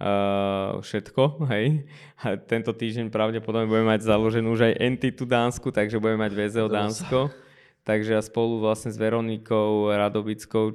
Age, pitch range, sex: 20-39, 100-115 Hz, male